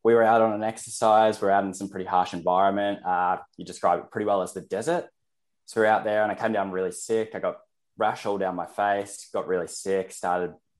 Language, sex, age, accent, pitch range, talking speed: English, male, 10-29, Australian, 95-110 Hz, 250 wpm